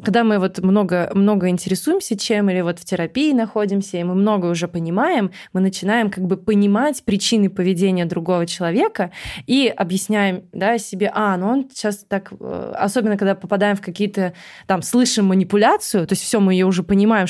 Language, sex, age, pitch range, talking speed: Russian, female, 20-39, 190-235 Hz, 175 wpm